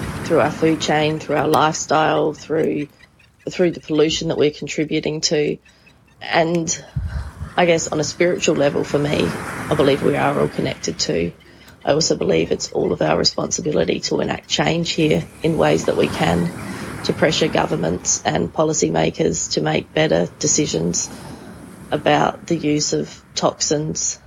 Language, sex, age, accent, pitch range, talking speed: English, female, 30-49, Australian, 150-170 Hz, 155 wpm